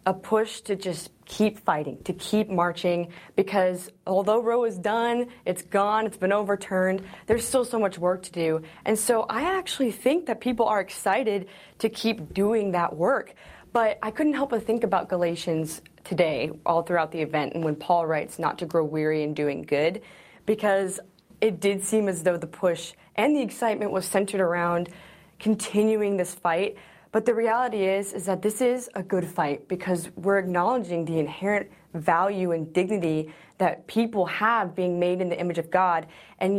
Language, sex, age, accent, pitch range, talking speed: English, female, 20-39, American, 175-220 Hz, 180 wpm